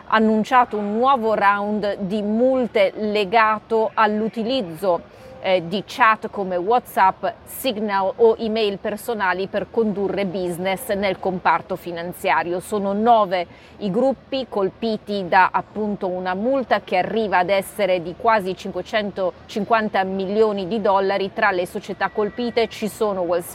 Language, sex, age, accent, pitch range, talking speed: Italian, female, 30-49, native, 195-230 Hz, 120 wpm